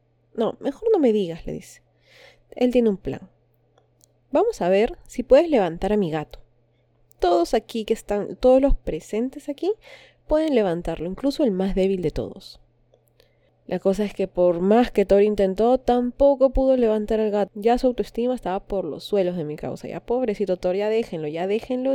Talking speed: 185 wpm